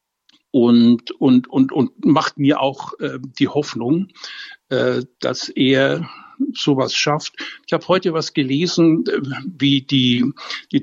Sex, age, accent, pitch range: male, 60-79, German, 140-225 Hz